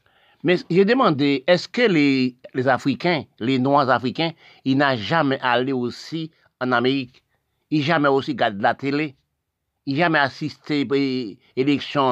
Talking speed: 155 wpm